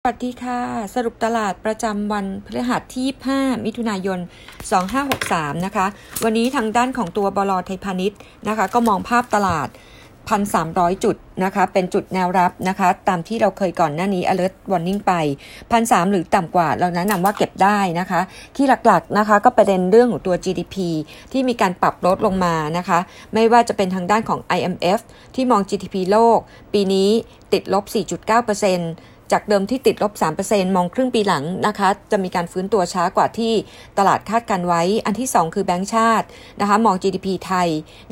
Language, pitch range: Thai, 180-225 Hz